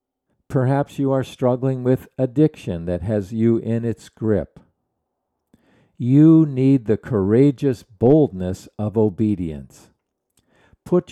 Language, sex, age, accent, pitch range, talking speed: English, male, 50-69, American, 95-135 Hz, 110 wpm